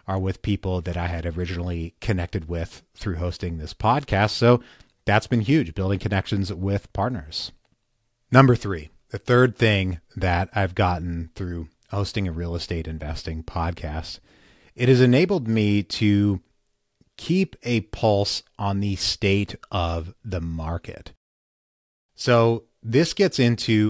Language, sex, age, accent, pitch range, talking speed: English, male, 30-49, American, 90-115 Hz, 135 wpm